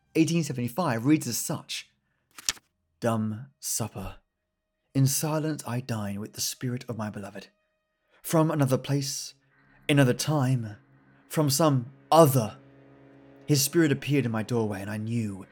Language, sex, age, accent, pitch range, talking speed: English, male, 30-49, British, 120-155 Hz, 130 wpm